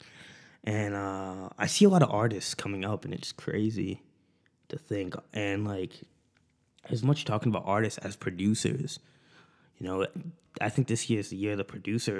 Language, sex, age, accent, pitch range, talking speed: English, male, 20-39, American, 95-120 Hz, 170 wpm